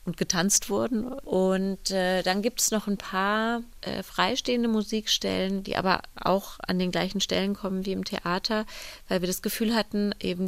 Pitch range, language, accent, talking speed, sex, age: 170-200 Hz, German, German, 180 wpm, female, 30-49